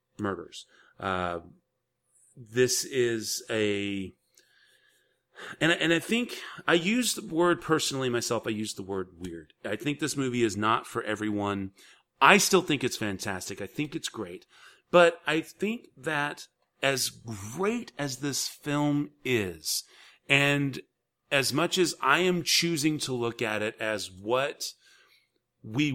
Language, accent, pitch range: English, American, 100-140 Hz